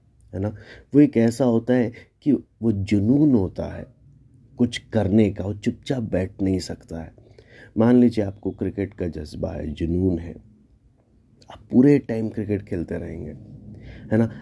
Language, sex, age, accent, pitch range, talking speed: Hindi, male, 30-49, native, 90-115 Hz, 160 wpm